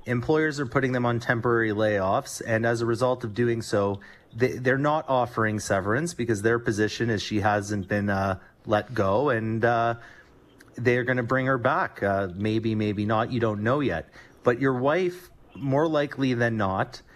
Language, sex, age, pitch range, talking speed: English, male, 30-49, 105-130 Hz, 180 wpm